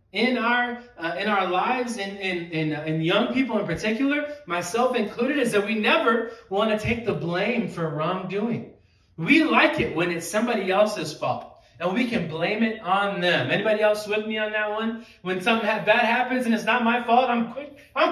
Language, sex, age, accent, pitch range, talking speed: English, male, 20-39, American, 180-245 Hz, 205 wpm